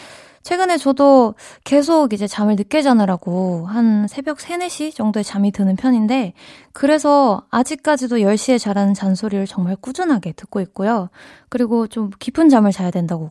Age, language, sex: 20-39, Korean, female